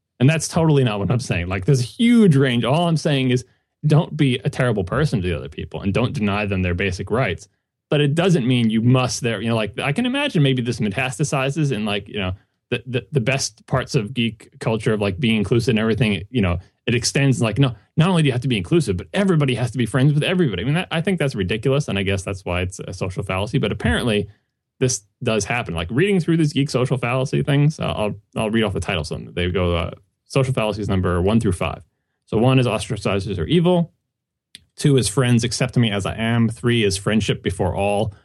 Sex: male